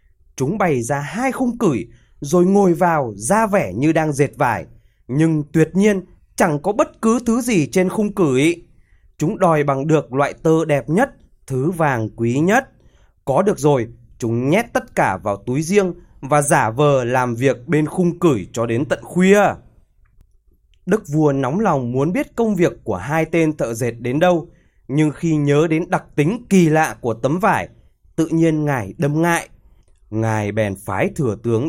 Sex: male